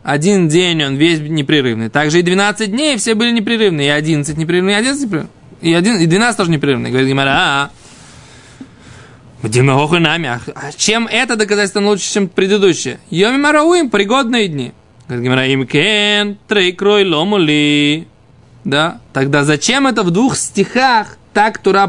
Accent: native